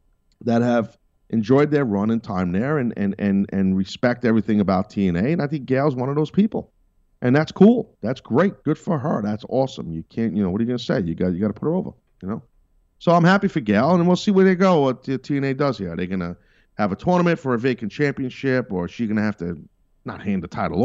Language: English